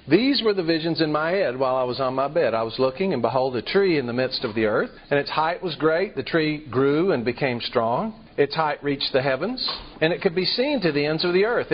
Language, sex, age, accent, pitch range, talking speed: English, male, 50-69, American, 130-180 Hz, 270 wpm